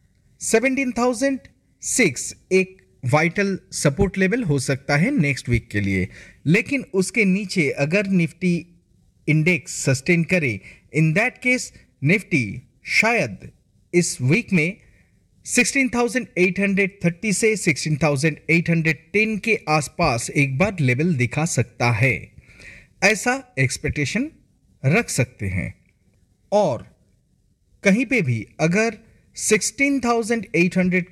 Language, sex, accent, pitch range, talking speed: Hindi, male, native, 145-210 Hz, 100 wpm